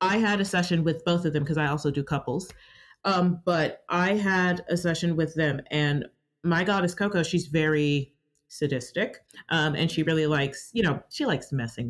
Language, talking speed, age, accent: English, 190 wpm, 30-49, American